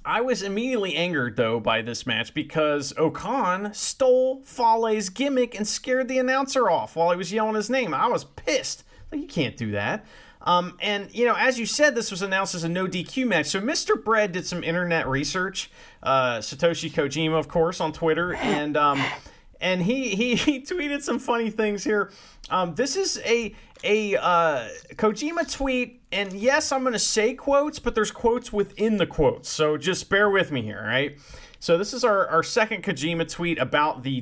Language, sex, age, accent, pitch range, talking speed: English, male, 30-49, American, 160-245 Hz, 190 wpm